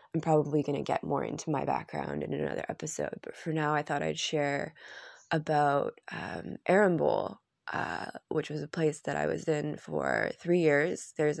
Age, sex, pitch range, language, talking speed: 20-39, female, 140-170 Hz, English, 185 wpm